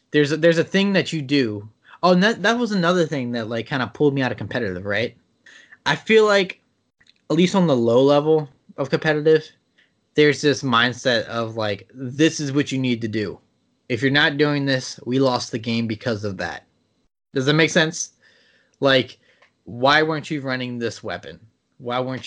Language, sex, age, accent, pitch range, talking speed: English, male, 20-39, American, 120-150 Hz, 195 wpm